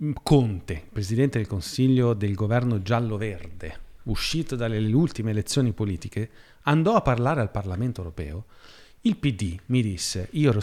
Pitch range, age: 105-140 Hz, 40-59